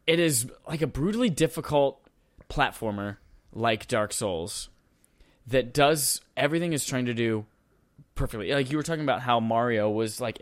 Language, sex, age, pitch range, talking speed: English, male, 10-29, 110-130 Hz, 155 wpm